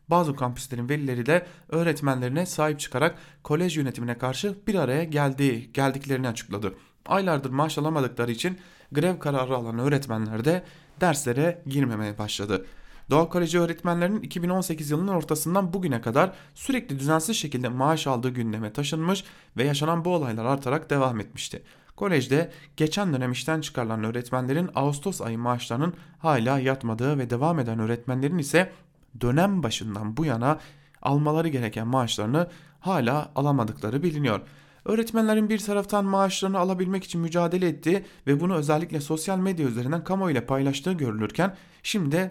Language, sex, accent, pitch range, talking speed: German, male, Turkish, 130-175 Hz, 130 wpm